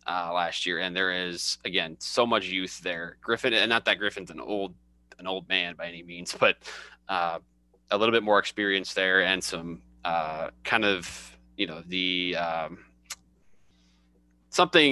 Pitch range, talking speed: 80-105 Hz, 170 wpm